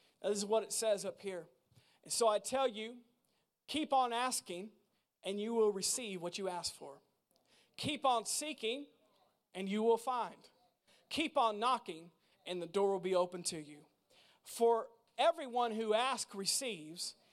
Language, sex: English, male